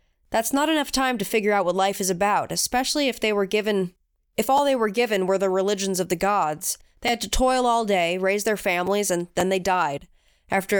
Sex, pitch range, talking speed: female, 185-225 Hz, 230 wpm